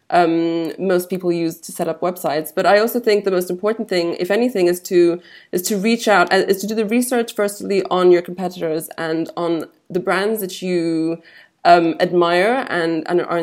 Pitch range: 165-195 Hz